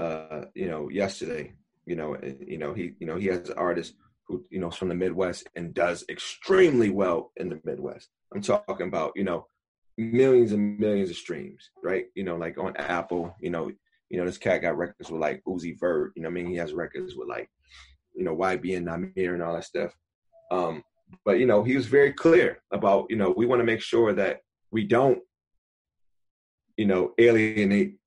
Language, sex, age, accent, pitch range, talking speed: English, male, 30-49, American, 90-110 Hz, 200 wpm